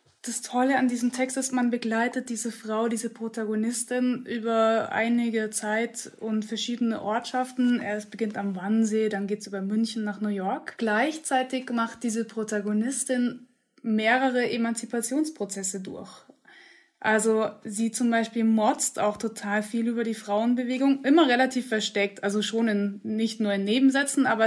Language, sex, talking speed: German, female, 145 wpm